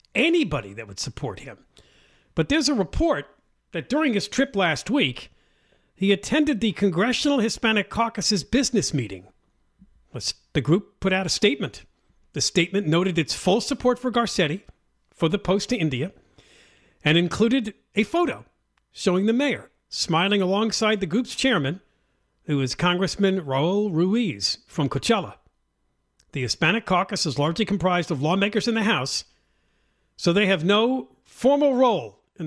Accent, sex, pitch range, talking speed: American, male, 150-220 Hz, 145 wpm